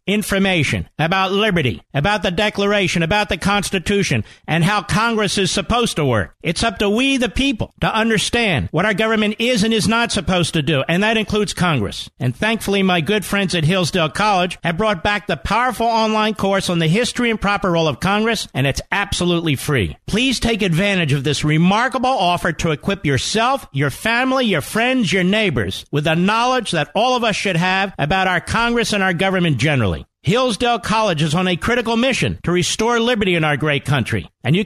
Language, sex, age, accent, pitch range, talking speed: English, male, 50-69, American, 165-220 Hz, 195 wpm